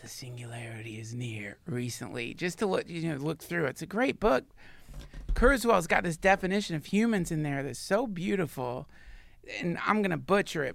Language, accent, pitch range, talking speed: English, American, 140-180 Hz, 180 wpm